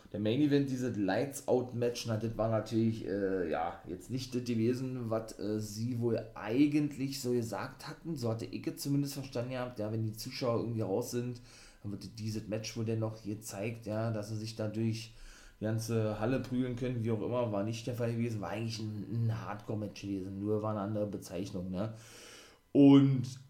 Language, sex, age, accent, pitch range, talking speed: German, male, 30-49, German, 110-125 Hz, 190 wpm